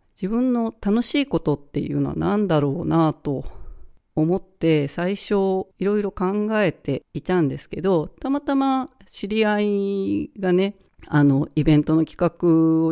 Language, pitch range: Japanese, 155-205 Hz